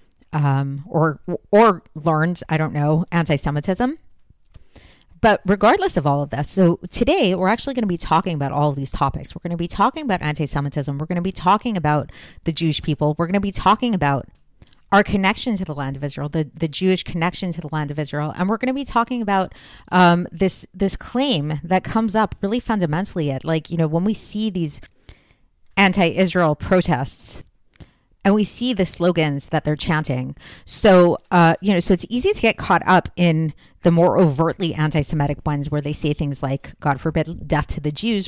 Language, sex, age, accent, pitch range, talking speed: English, female, 30-49, American, 150-195 Hz, 200 wpm